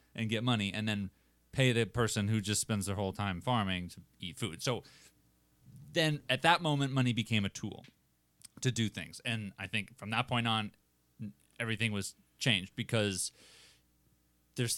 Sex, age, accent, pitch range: male, 30-49, American, 90-115 Hz